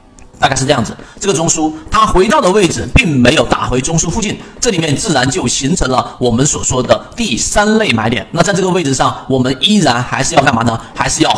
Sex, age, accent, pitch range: male, 40-59, native, 130-190 Hz